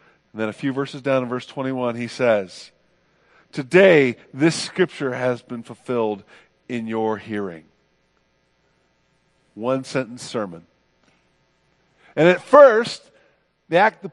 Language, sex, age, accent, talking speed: English, male, 50-69, American, 120 wpm